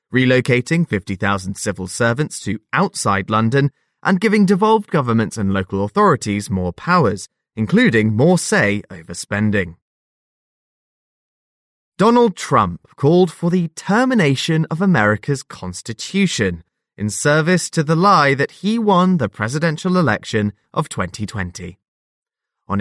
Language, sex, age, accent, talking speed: English, male, 20-39, British, 115 wpm